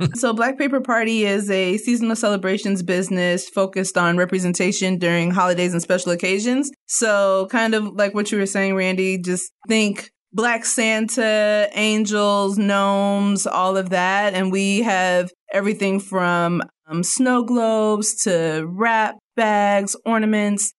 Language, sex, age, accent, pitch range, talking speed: English, female, 20-39, American, 185-220 Hz, 135 wpm